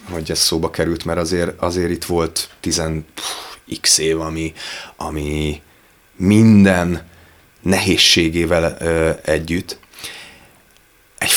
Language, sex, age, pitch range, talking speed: Hungarian, male, 30-49, 80-95 Hz, 100 wpm